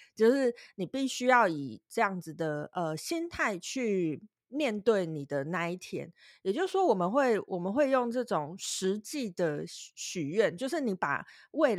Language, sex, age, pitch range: Chinese, female, 30-49, 170-240 Hz